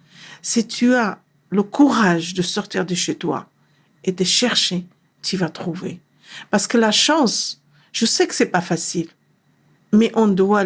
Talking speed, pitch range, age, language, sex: 165 wpm, 170-205 Hz, 50-69, French, female